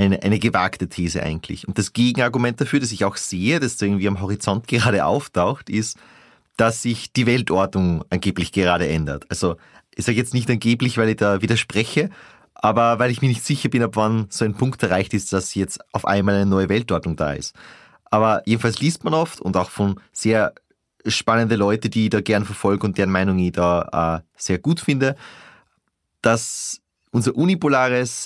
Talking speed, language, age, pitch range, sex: 185 wpm, German, 30-49, 95-120 Hz, male